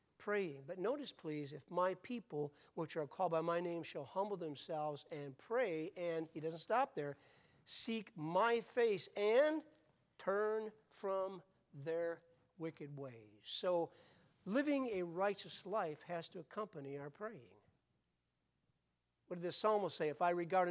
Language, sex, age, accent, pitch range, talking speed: English, male, 50-69, American, 155-215 Hz, 145 wpm